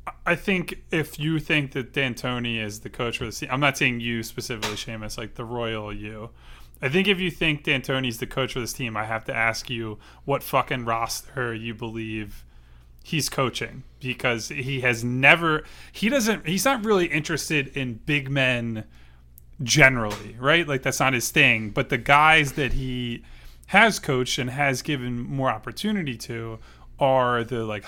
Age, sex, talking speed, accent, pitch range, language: 20-39, male, 175 wpm, American, 115-145 Hz, English